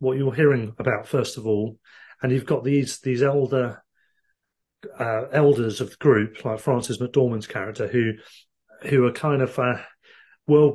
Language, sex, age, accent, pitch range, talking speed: English, male, 40-59, British, 115-140 Hz, 160 wpm